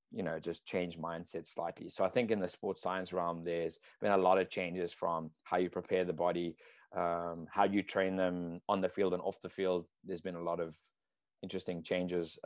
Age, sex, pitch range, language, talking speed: 20-39, male, 85-95 Hz, English, 215 wpm